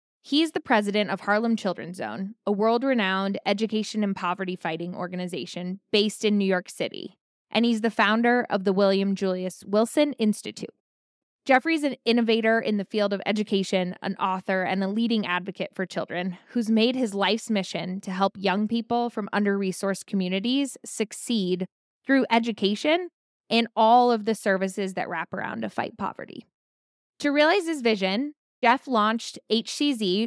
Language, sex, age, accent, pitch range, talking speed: English, female, 10-29, American, 190-230 Hz, 155 wpm